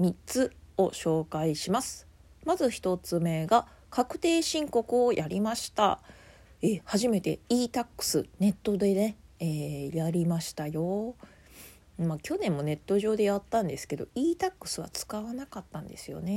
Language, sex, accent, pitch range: Japanese, female, native, 160-220 Hz